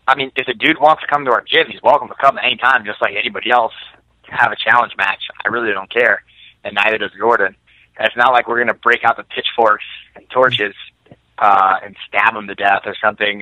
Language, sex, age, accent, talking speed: English, male, 20-39, American, 245 wpm